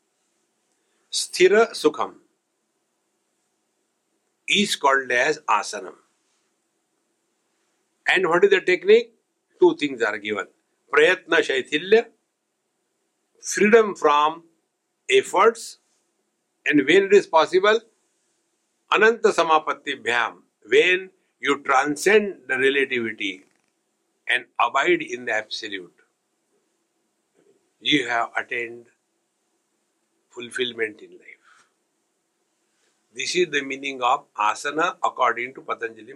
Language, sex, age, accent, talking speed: English, male, 60-79, Indian, 90 wpm